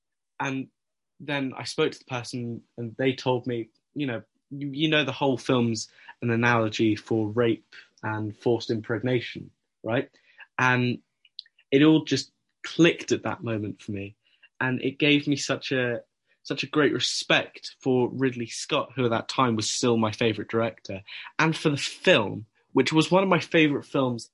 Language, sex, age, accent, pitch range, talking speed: English, male, 10-29, British, 115-140 Hz, 175 wpm